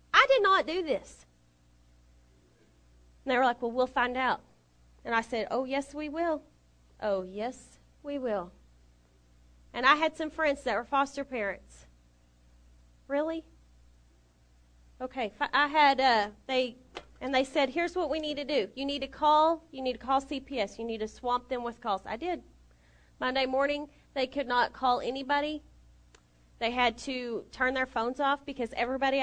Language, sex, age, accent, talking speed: English, female, 30-49, American, 170 wpm